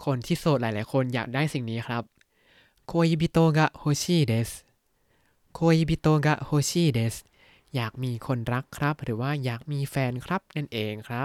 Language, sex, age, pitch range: Thai, male, 20-39, 120-160 Hz